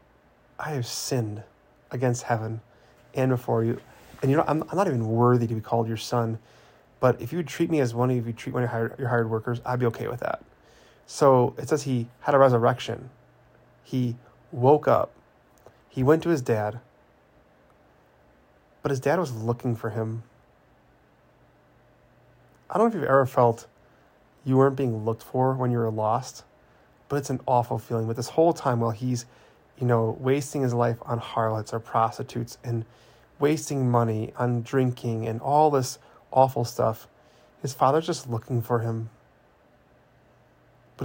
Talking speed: 175 wpm